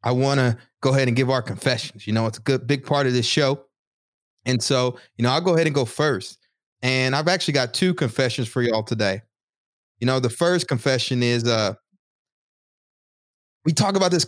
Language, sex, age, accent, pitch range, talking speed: English, male, 20-39, American, 120-155 Hz, 210 wpm